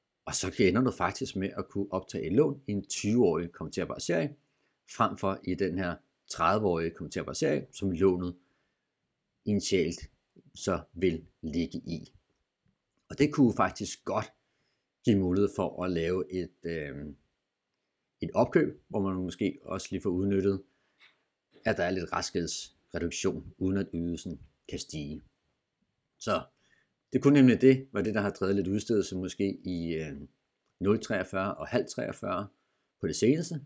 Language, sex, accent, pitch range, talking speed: Danish, male, native, 85-100 Hz, 145 wpm